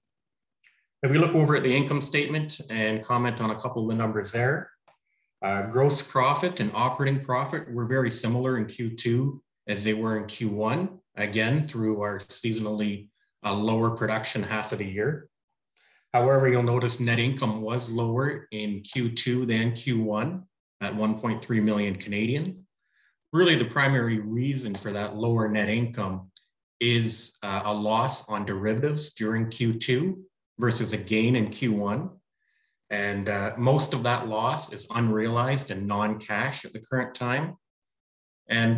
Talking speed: 150 wpm